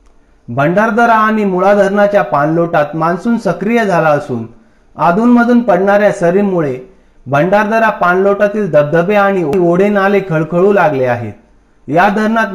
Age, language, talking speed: 40-59, Marathi, 110 wpm